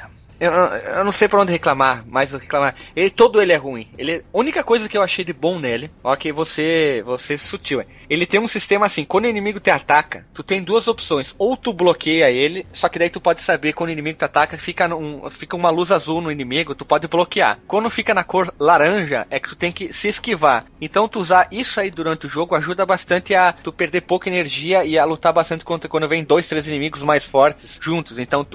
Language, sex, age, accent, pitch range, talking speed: Portuguese, male, 20-39, Brazilian, 145-180 Hz, 230 wpm